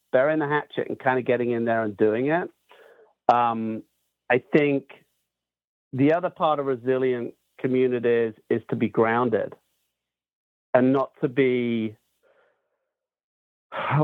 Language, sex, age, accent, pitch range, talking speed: English, male, 50-69, British, 120-150 Hz, 130 wpm